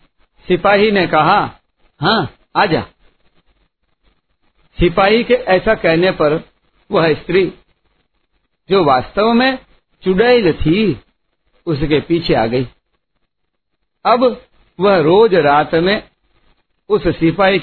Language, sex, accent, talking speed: Hindi, male, native, 100 wpm